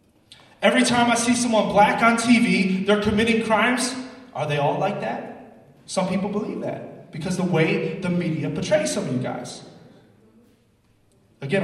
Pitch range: 160-225 Hz